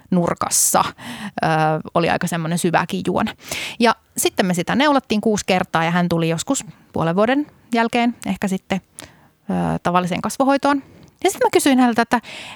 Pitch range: 175-235 Hz